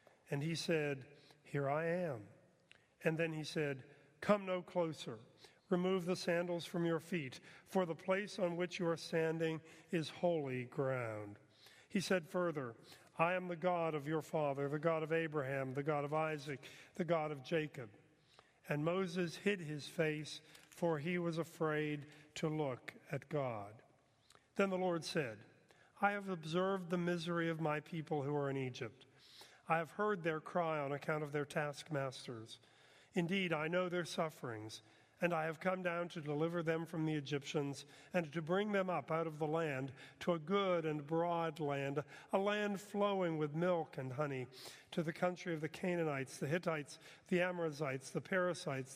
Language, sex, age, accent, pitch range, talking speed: English, male, 40-59, American, 145-175 Hz, 175 wpm